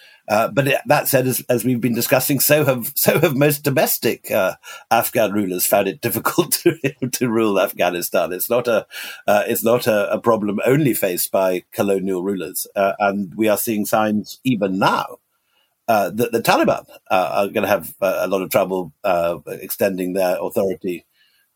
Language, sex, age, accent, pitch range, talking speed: English, male, 50-69, British, 100-130 Hz, 180 wpm